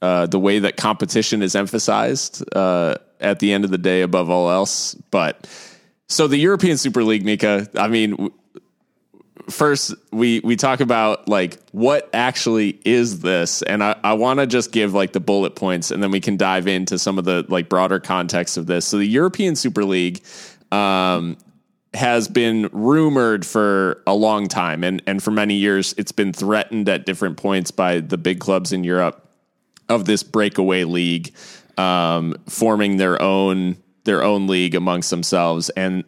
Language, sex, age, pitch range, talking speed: English, male, 20-39, 95-115 Hz, 175 wpm